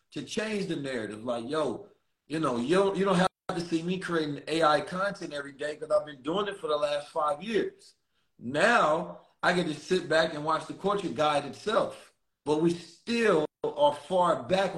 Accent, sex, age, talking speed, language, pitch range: American, male, 30-49, 200 wpm, English, 150-185 Hz